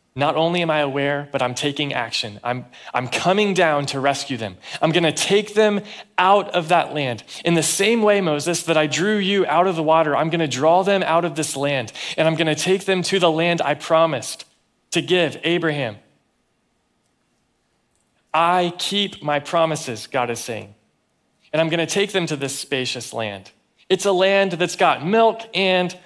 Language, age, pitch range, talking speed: English, 30-49, 140-170 Hz, 185 wpm